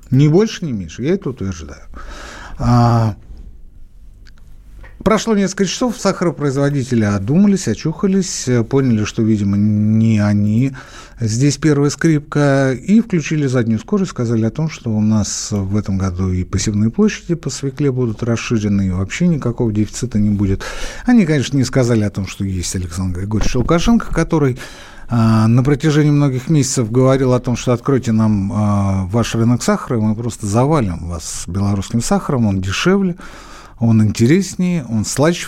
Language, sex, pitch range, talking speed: Russian, male, 105-155 Hz, 145 wpm